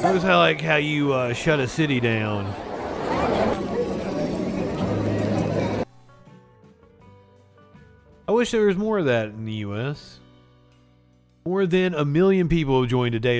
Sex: male